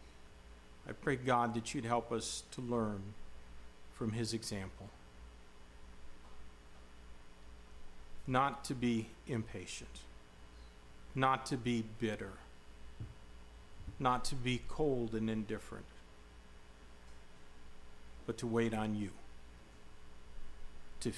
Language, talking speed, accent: English, 90 wpm, American